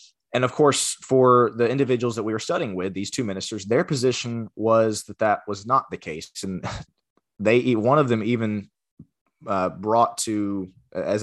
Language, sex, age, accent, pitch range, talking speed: English, male, 20-39, American, 95-120 Hz, 175 wpm